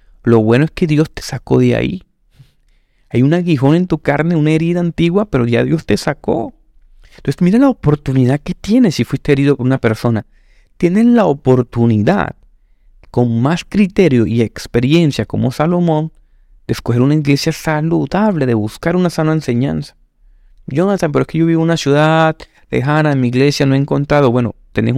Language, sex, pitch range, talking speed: Spanish, male, 115-150 Hz, 175 wpm